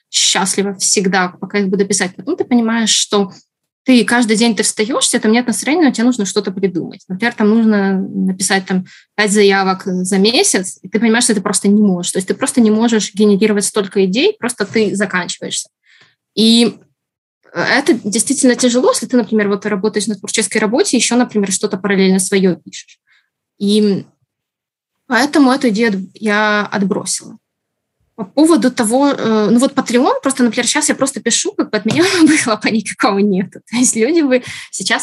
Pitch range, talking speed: 195-235 Hz, 175 wpm